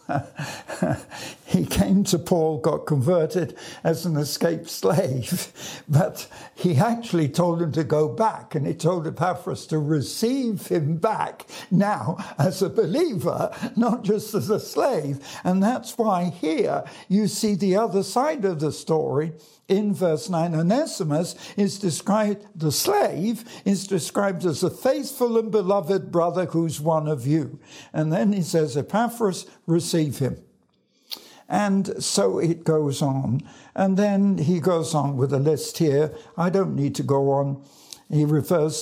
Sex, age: male, 60-79